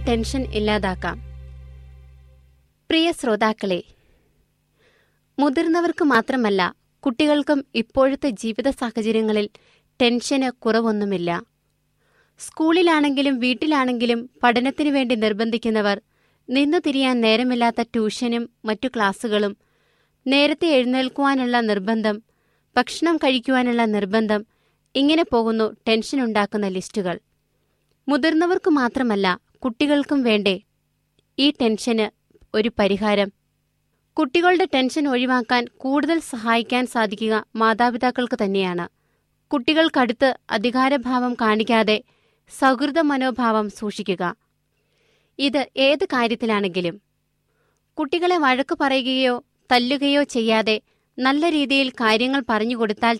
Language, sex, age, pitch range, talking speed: Malayalam, female, 20-39, 215-275 Hz, 70 wpm